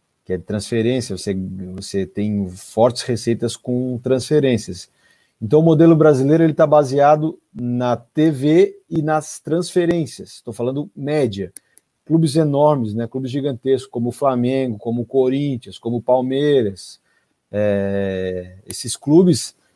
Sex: male